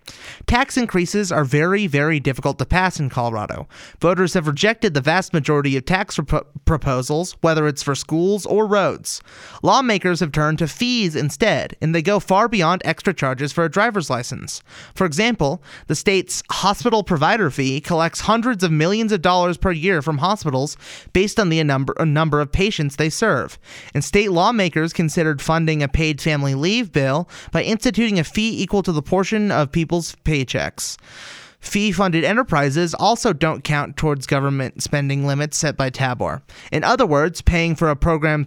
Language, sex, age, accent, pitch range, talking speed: English, male, 30-49, American, 145-195 Hz, 165 wpm